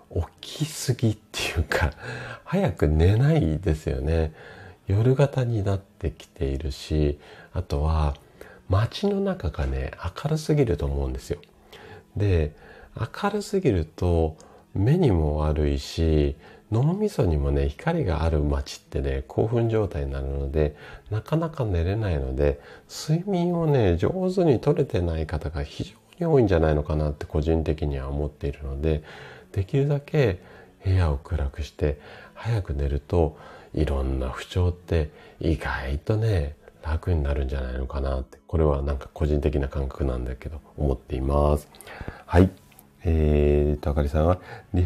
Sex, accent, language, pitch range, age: male, native, Japanese, 75-110 Hz, 40-59